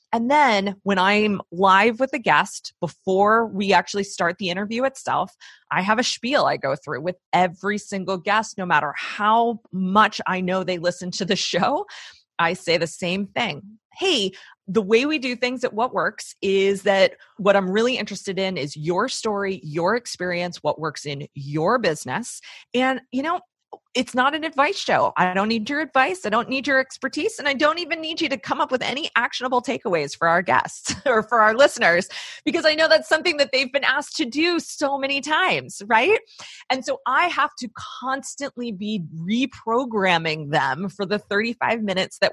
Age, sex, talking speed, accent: 30-49, female, 190 wpm, American